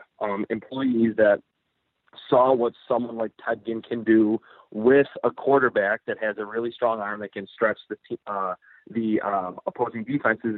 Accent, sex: American, male